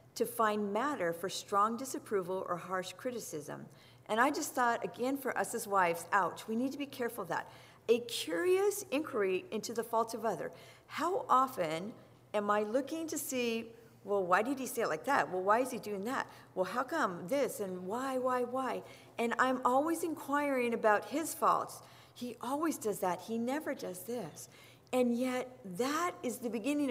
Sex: female